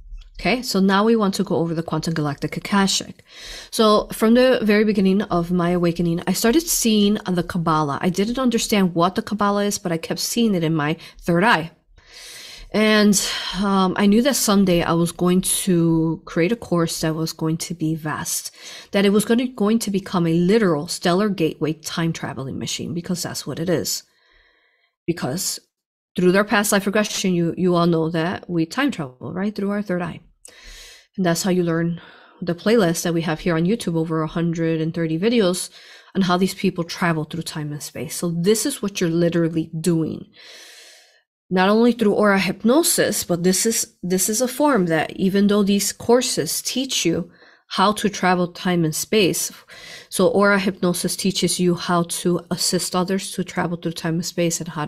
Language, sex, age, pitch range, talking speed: English, female, 30-49, 165-205 Hz, 190 wpm